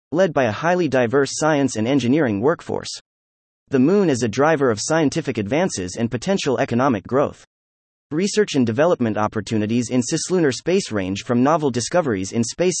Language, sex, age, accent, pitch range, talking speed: English, male, 30-49, American, 110-155 Hz, 160 wpm